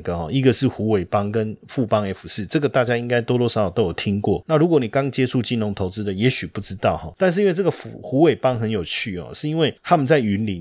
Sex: male